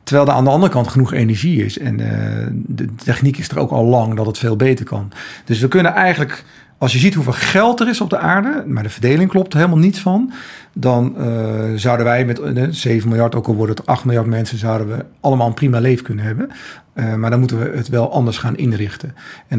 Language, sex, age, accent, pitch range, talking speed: Dutch, male, 40-59, Dutch, 115-140 Hz, 240 wpm